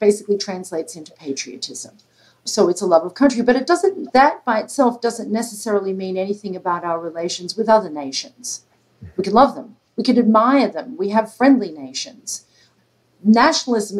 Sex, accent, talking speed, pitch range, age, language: female, American, 165 wpm, 185-230 Hz, 50-69, English